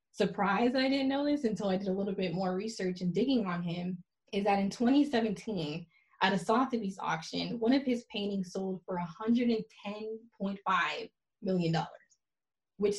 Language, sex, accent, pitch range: English, female, American, 185-225 Hz